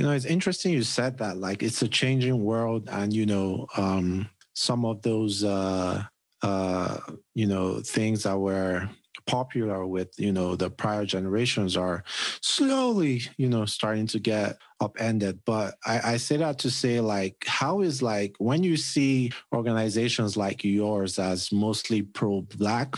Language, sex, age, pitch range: English, male, 30-49, 100-120 Hz